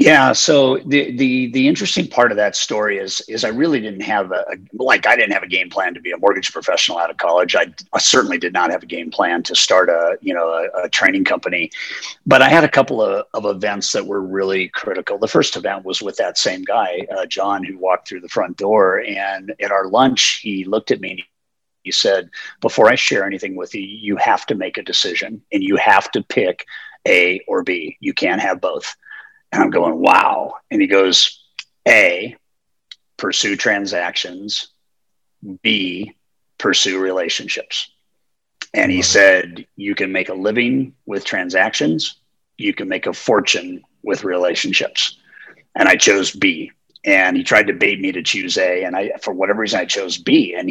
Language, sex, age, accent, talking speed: English, male, 50-69, American, 195 wpm